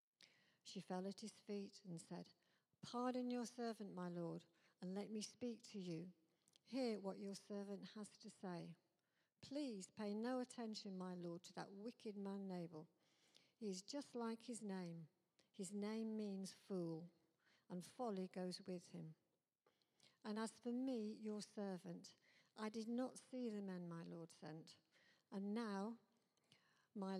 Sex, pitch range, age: female, 185-225 Hz, 60-79